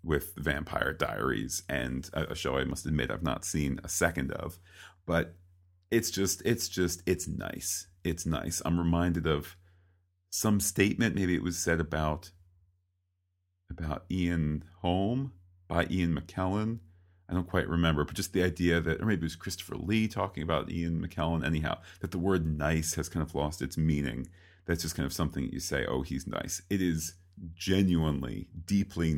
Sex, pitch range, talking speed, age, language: male, 80-90 Hz, 175 wpm, 40-59, English